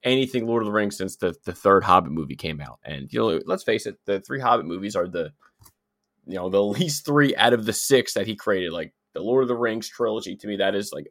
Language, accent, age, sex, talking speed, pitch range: English, American, 20-39, male, 265 wpm, 95-130 Hz